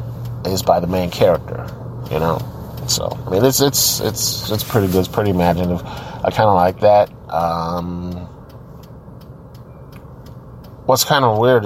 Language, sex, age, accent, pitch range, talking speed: English, male, 30-49, American, 95-120 Hz, 150 wpm